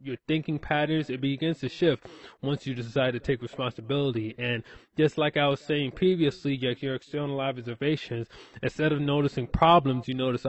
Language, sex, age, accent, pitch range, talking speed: English, male, 20-39, American, 130-165 Hz, 165 wpm